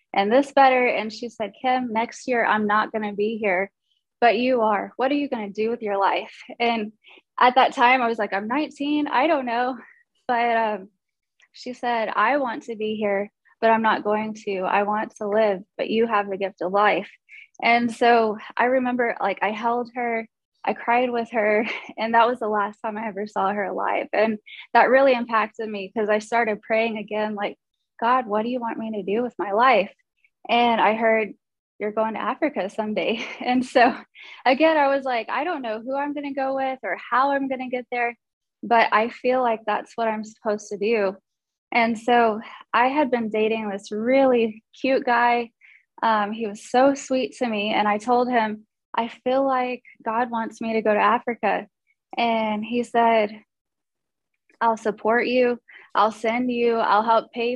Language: English